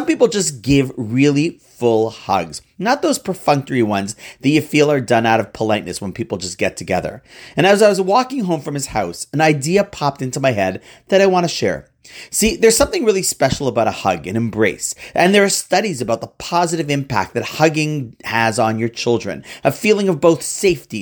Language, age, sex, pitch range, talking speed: English, 40-59, male, 120-190 Hz, 210 wpm